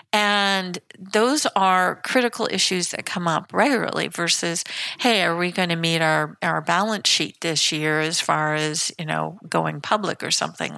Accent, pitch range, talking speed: American, 160-195 Hz, 175 wpm